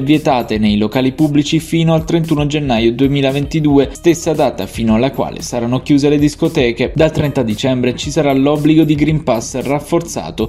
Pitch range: 120-155 Hz